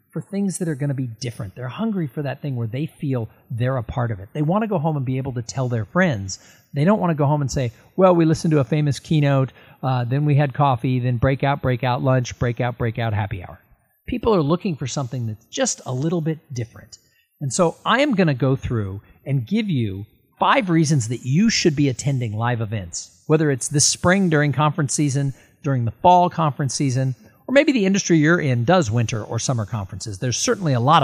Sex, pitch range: male, 115-165 Hz